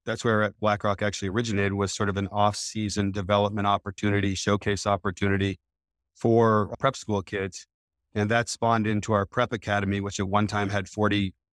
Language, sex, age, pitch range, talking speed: English, male, 40-59, 95-110 Hz, 160 wpm